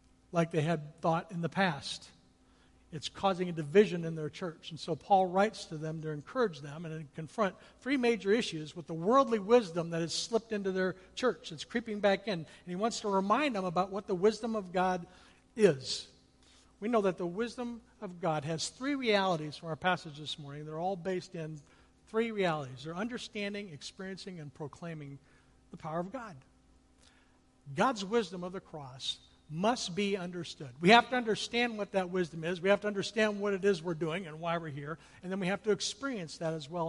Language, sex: English, male